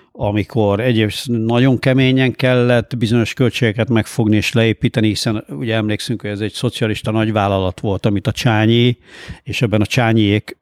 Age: 50-69